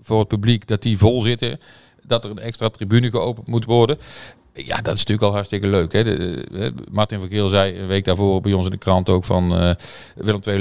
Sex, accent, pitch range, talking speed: male, Dutch, 90-105 Hz, 245 wpm